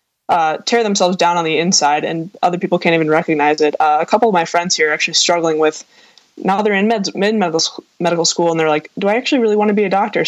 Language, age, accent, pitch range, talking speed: English, 20-39, American, 160-195 Hz, 265 wpm